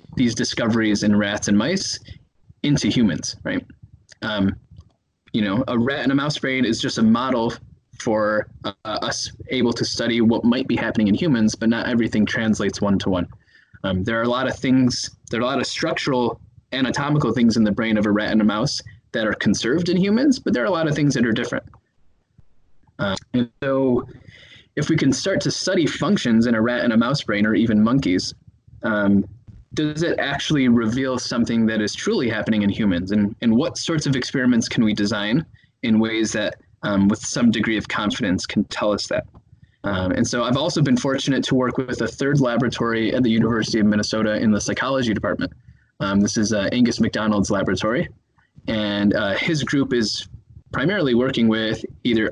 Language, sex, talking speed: English, male, 195 wpm